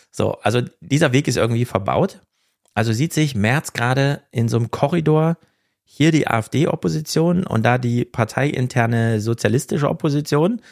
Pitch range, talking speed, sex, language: 105-140 Hz, 140 wpm, male, German